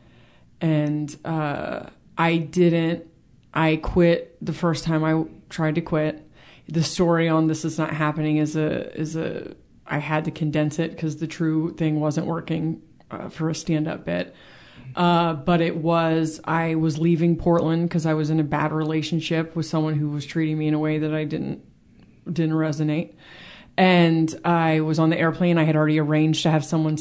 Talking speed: 185 wpm